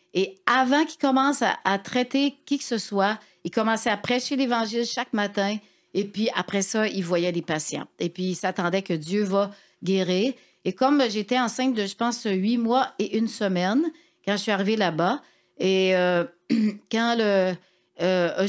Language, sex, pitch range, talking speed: French, female, 185-235 Hz, 185 wpm